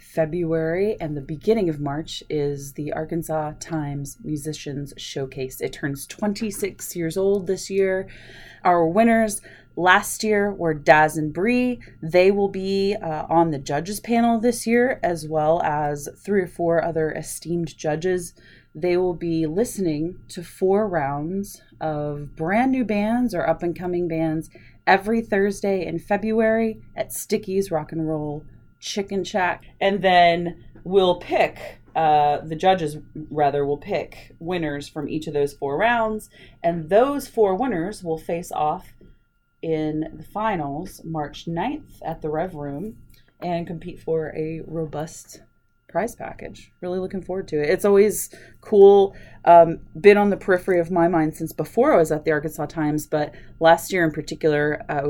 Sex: female